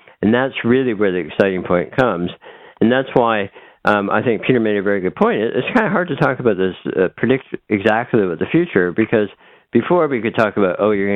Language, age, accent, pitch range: English, 60-79, American, 95-110 Hz